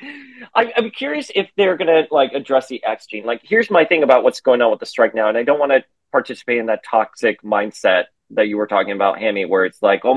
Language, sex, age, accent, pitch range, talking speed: English, male, 30-49, American, 100-145 Hz, 255 wpm